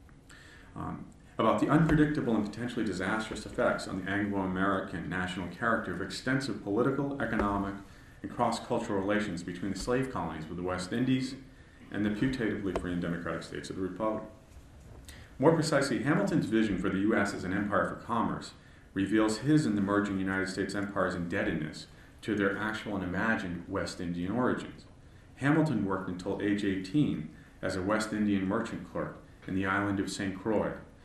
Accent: American